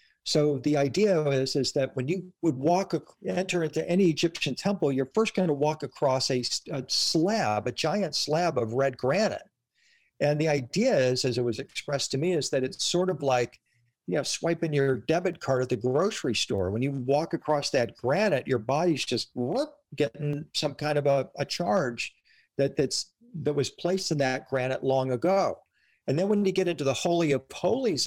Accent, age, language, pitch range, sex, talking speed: American, 50-69, English, 135-180 Hz, male, 200 wpm